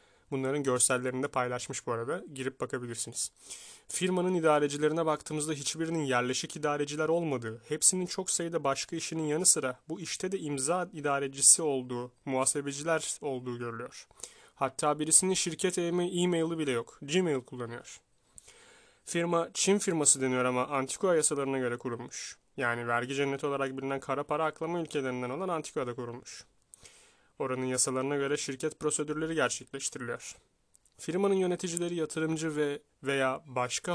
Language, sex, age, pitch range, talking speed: Turkish, male, 30-49, 130-165 Hz, 125 wpm